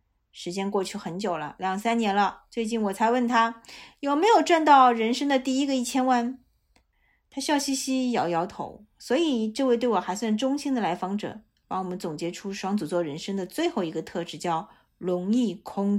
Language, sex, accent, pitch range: Chinese, female, native, 180-255 Hz